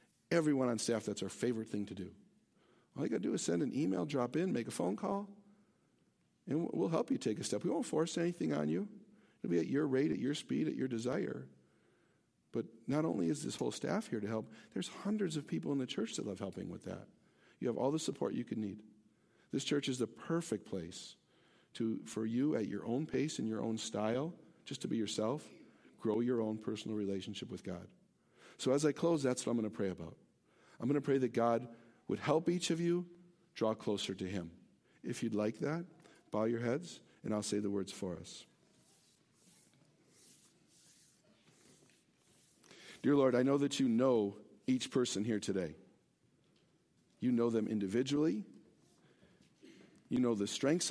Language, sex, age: English, male, 50-69